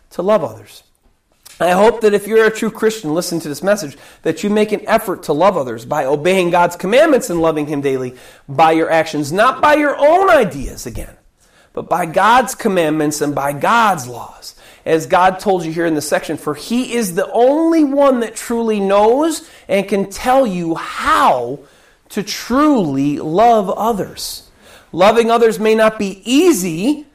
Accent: American